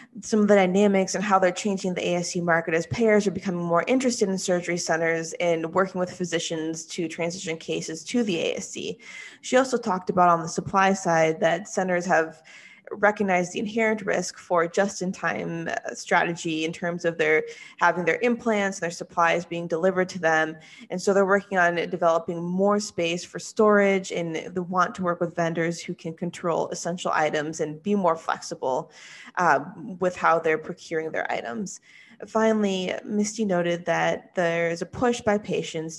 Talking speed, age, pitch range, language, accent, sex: 170 wpm, 20-39, 165-200 Hz, English, American, female